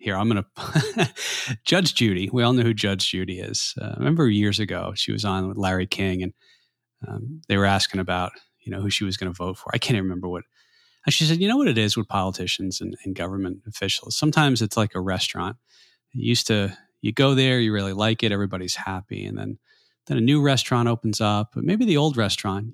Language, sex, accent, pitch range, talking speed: English, male, American, 95-120 Hz, 230 wpm